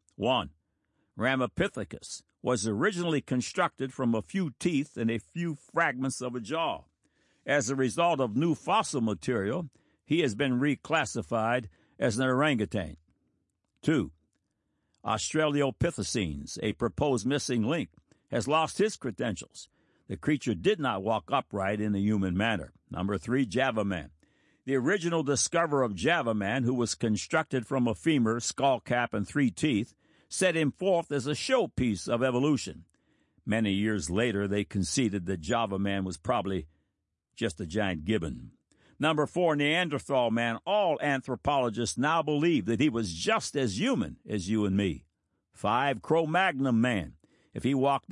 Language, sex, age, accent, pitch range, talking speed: English, male, 60-79, American, 105-145 Hz, 145 wpm